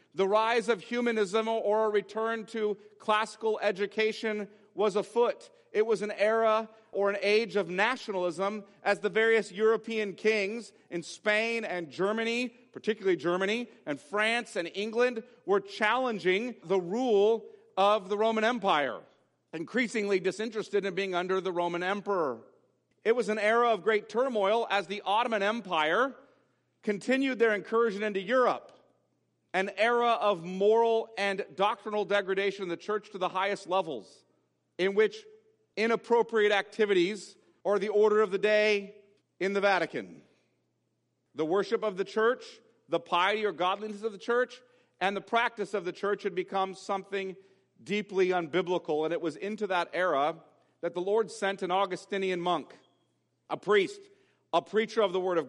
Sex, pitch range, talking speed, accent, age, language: male, 195-225 Hz, 150 wpm, American, 40-59, English